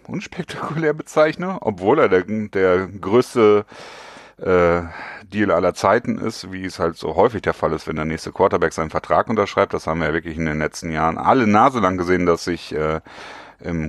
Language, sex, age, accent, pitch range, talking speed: German, male, 40-59, German, 90-120 Hz, 190 wpm